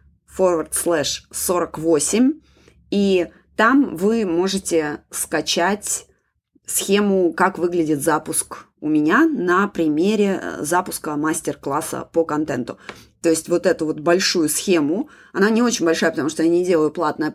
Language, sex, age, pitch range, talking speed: Russian, female, 20-39, 165-215 Hz, 130 wpm